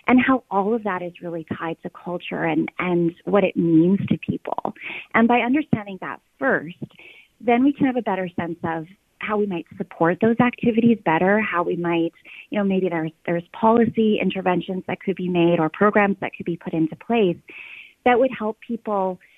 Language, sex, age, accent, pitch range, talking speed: English, female, 30-49, American, 175-220 Hz, 195 wpm